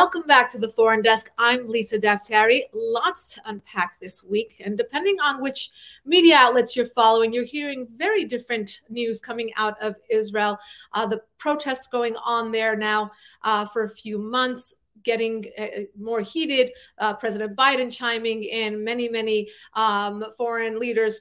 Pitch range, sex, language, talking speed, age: 210-240 Hz, female, English, 160 wpm, 30-49